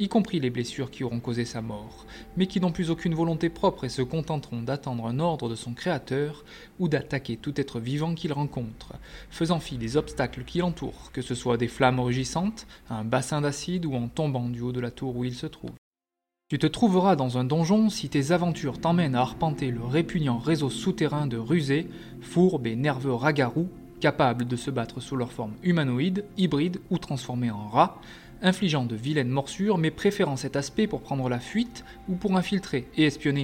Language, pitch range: French, 125-165 Hz